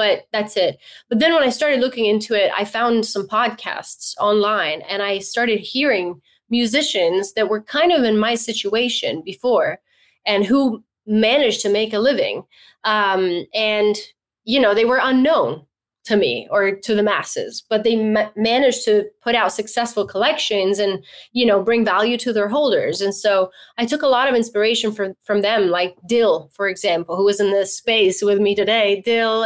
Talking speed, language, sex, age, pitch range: 185 wpm, English, female, 20-39, 205-250 Hz